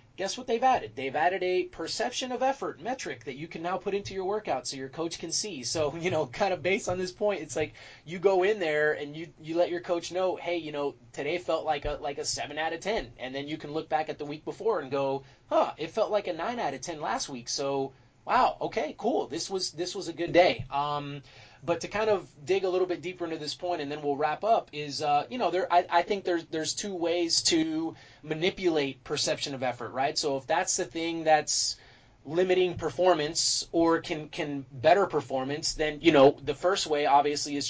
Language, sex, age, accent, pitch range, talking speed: English, male, 30-49, American, 140-175 Hz, 240 wpm